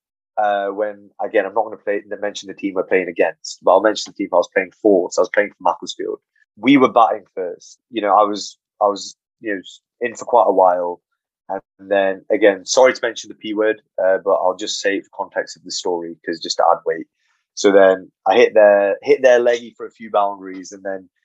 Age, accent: 20-39, British